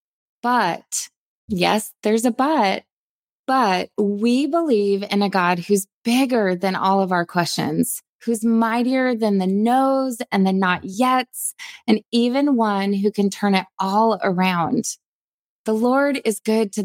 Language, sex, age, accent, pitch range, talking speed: English, female, 20-39, American, 195-245 Hz, 145 wpm